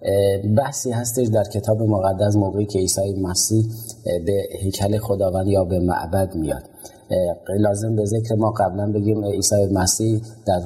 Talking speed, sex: 145 wpm, male